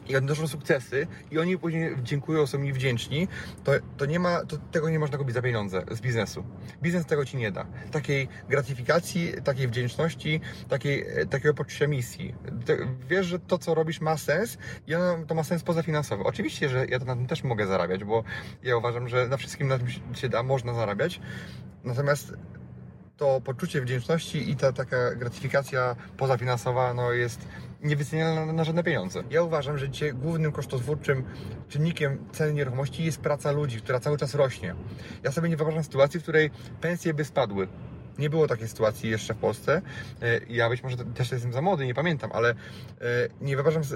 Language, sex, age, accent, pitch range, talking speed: Polish, male, 30-49, native, 125-155 Hz, 175 wpm